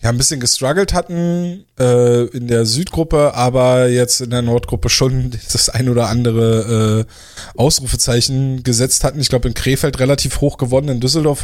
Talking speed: 170 wpm